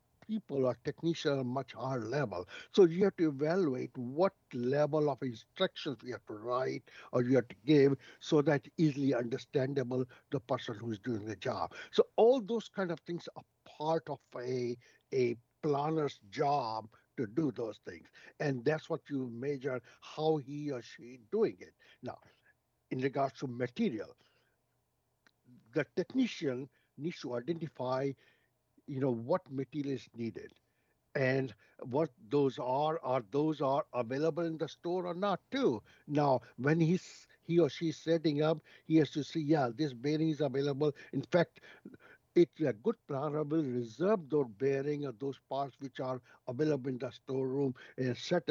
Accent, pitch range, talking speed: Indian, 130-160 Hz, 160 wpm